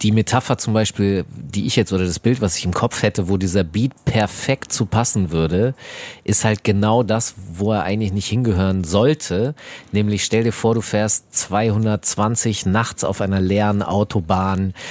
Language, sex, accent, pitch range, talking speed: German, male, German, 100-120 Hz, 175 wpm